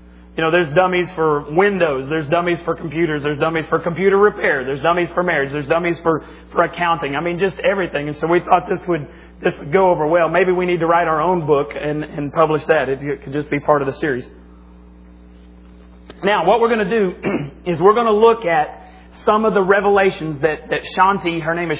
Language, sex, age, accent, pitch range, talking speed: English, male, 40-59, American, 140-180 Hz, 225 wpm